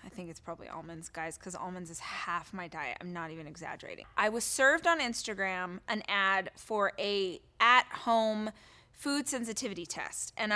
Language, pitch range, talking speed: English, 200-260 Hz, 170 wpm